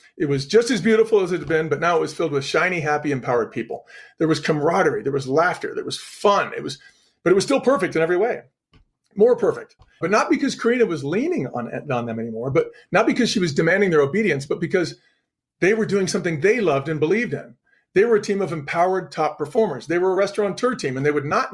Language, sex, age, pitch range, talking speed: English, male, 40-59, 145-215 Hz, 240 wpm